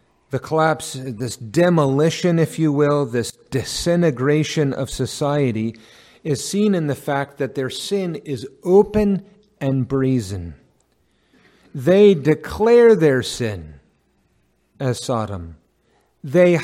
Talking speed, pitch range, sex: 110 wpm, 135-180 Hz, male